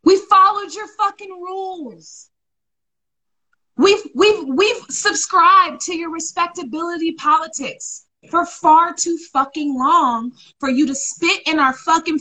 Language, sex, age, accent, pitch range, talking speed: English, female, 30-49, American, 265-350 Hz, 125 wpm